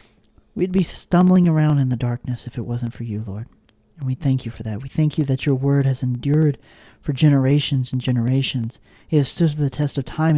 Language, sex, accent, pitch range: English, male, American, 120-150 Hz